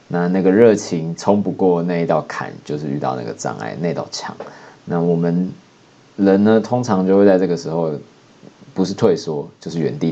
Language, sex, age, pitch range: Chinese, male, 20-39, 80-100 Hz